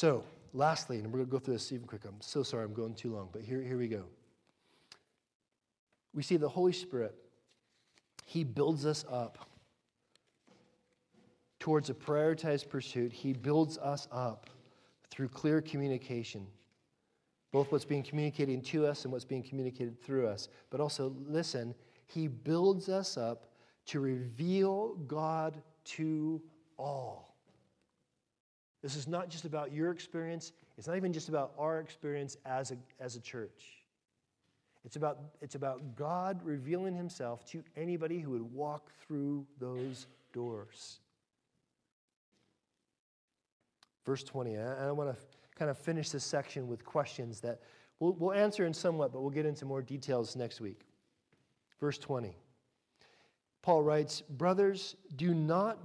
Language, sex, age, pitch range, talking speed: English, male, 40-59, 125-160 Hz, 145 wpm